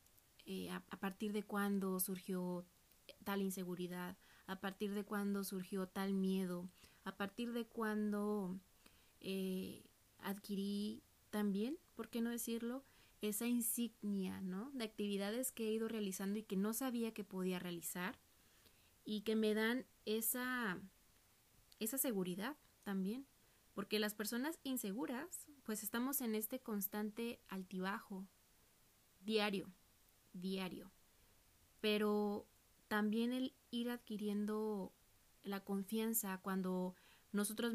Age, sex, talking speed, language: 20-39, female, 115 wpm, Spanish